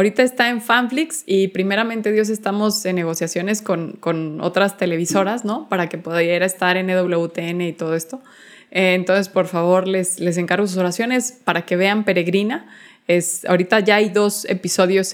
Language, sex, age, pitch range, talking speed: Spanish, female, 20-39, 180-215 Hz, 170 wpm